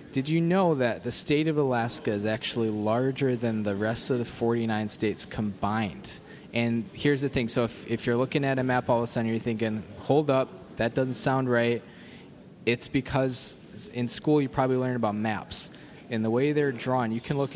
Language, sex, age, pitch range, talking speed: English, male, 20-39, 110-130 Hz, 205 wpm